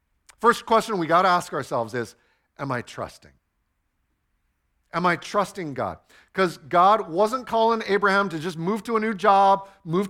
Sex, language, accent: male, English, American